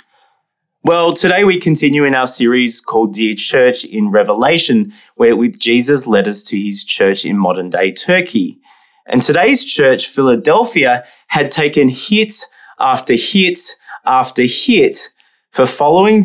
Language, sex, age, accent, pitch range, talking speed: English, male, 20-39, Australian, 125-185 Hz, 135 wpm